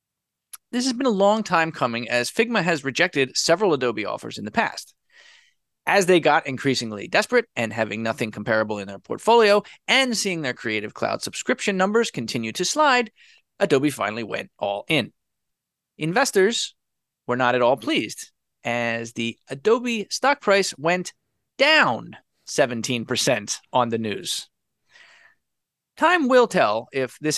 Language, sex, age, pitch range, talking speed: English, male, 30-49, 125-205 Hz, 145 wpm